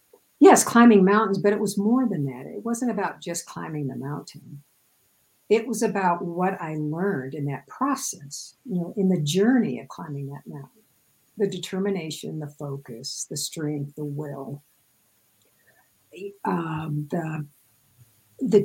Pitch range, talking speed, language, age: 150-205 Hz, 145 wpm, English, 60-79